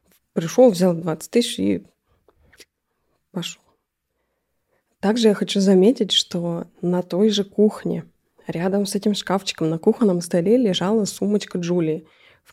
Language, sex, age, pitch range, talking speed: Russian, female, 20-39, 165-210 Hz, 125 wpm